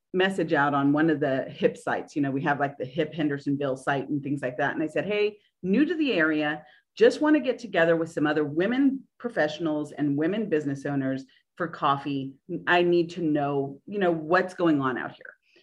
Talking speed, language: 215 wpm, English